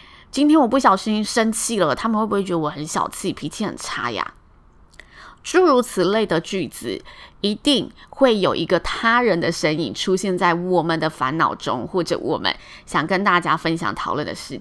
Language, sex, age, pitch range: Chinese, female, 20-39, 185-245 Hz